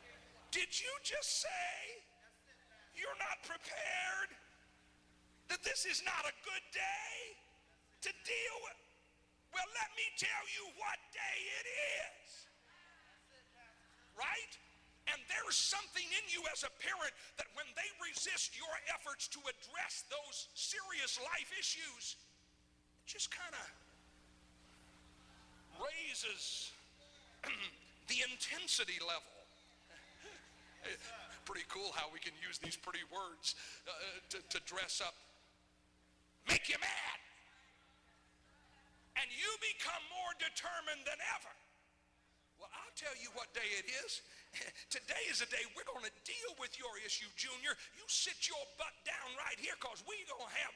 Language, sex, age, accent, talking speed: English, male, 50-69, American, 135 wpm